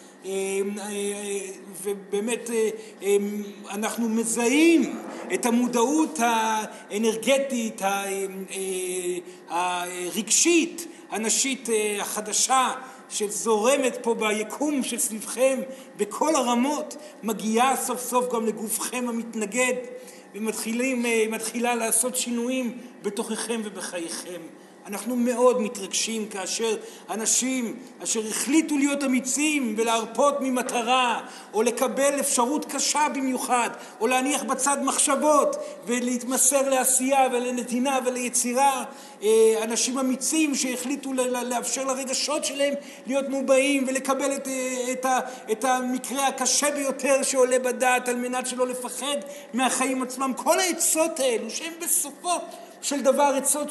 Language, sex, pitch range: Hebrew, male, 220-270 Hz